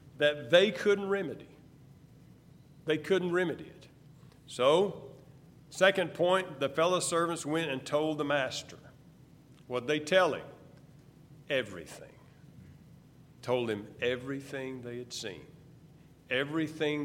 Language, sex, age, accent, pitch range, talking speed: English, male, 50-69, American, 145-180 Hz, 110 wpm